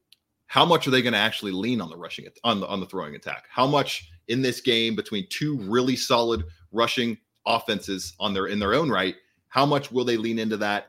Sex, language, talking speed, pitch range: male, English, 225 wpm, 100-125 Hz